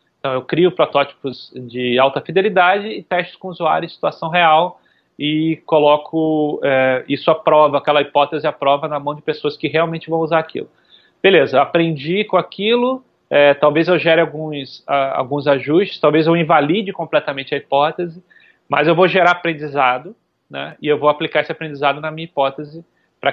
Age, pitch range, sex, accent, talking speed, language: 30-49, 140-165 Hz, male, Brazilian, 175 wpm, Portuguese